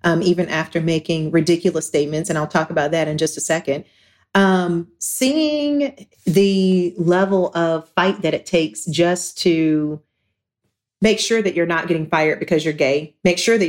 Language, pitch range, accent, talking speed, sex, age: English, 160-195 Hz, American, 170 wpm, female, 40-59